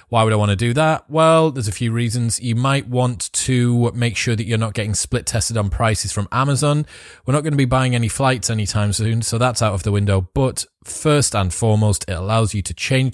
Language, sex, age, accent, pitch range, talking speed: English, male, 20-39, British, 95-120 Hz, 235 wpm